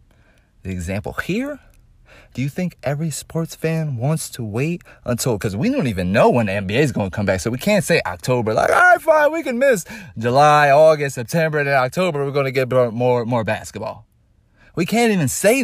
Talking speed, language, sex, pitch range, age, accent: 205 wpm, English, male, 100-155 Hz, 30-49, American